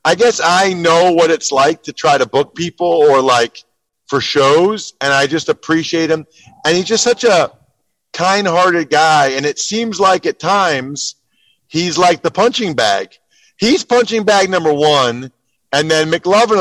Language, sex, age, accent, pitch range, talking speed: English, male, 40-59, American, 155-195 Hz, 175 wpm